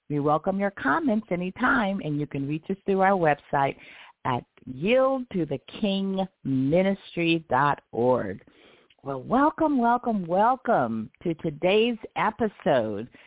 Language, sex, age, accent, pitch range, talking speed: English, female, 50-69, American, 135-190 Hz, 100 wpm